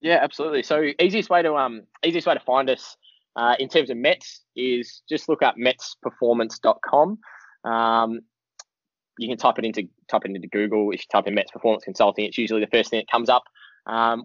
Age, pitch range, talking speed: 10-29, 110-135 Hz, 200 wpm